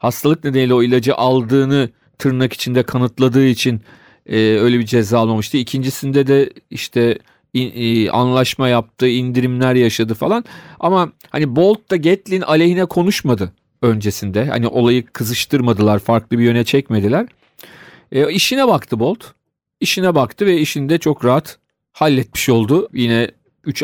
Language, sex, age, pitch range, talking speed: Turkish, male, 40-59, 115-155 Hz, 140 wpm